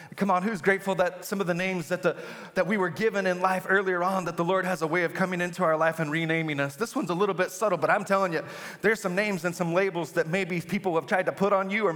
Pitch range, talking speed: 165-210 Hz, 295 wpm